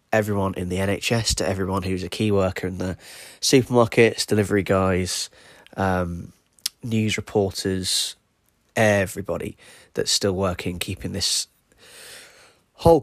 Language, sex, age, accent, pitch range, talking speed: English, male, 20-39, British, 90-105 Hz, 115 wpm